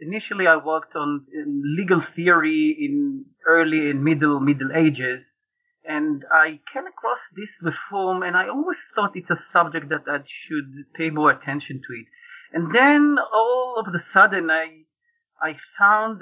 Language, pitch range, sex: English, 150-195 Hz, male